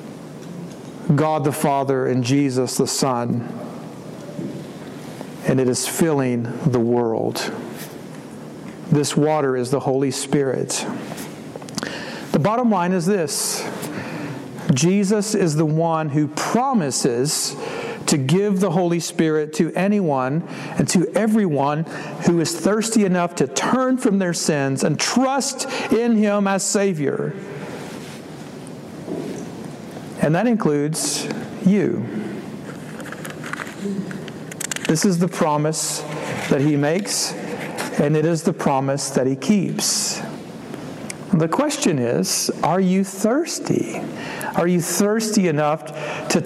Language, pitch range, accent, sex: English, 150-195 Hz, American, male